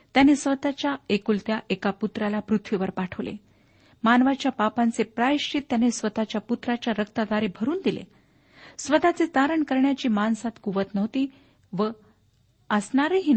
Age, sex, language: 50-69, female, Marathi